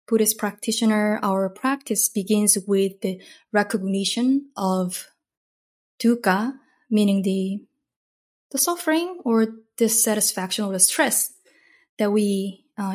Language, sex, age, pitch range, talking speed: English, female, 20-39, 195-235 Hz, 100 wpm